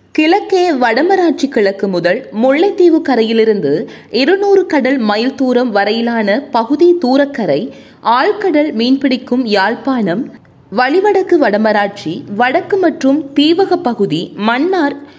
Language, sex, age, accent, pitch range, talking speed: Tamil, female, 20-39, native, 220-330 Hz, 85 wpm